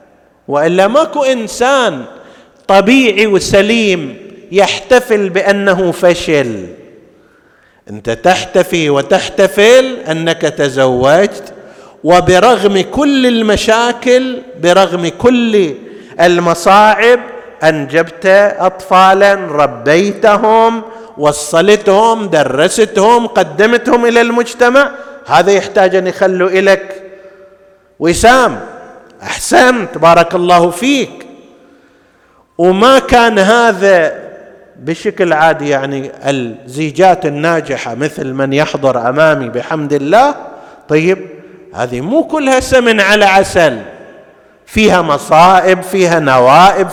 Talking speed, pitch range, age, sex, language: 80 wpm, 165-225 Hz, 50-69, male, Arabic